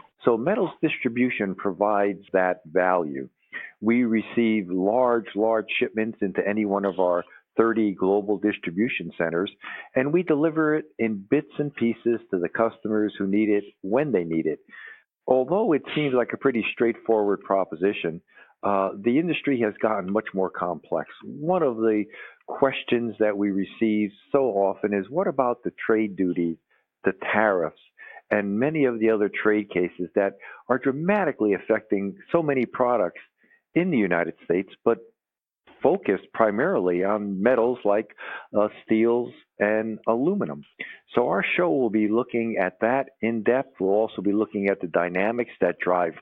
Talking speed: 155 wpm